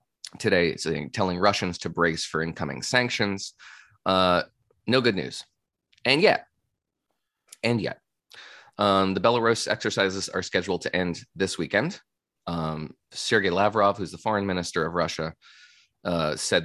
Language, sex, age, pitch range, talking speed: English, male, 20-39, 85-105 Hz, 140 wpm